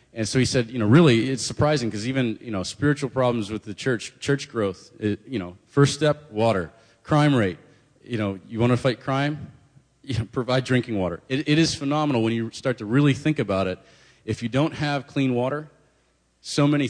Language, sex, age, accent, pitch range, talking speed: English, male, 40-59, American, 100-130 Hz, 210 wpm